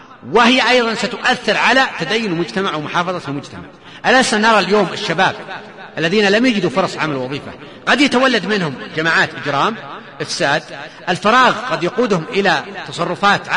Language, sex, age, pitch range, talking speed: Arabic, male, 40-59, 175-235 Hz, 130 wpm